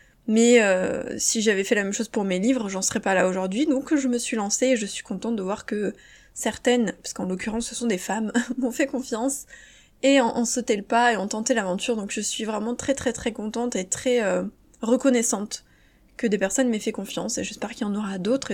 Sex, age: female, 20-39